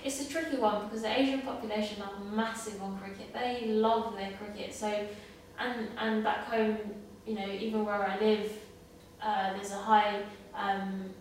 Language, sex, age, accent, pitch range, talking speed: English, female, 20-39, British, 200-215 Hz, 170 wpm